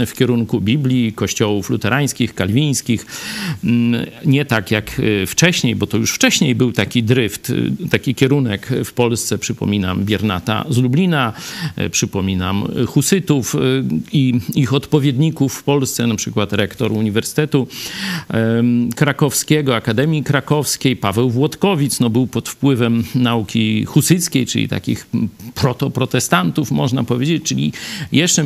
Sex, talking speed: male, 115 wpm